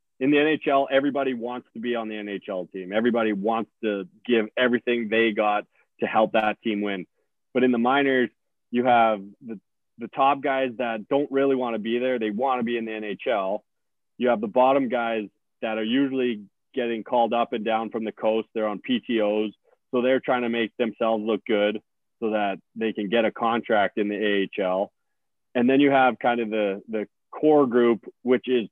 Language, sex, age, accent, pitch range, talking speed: English, male, 30-49, American, 110-130 Hz, 200 wpm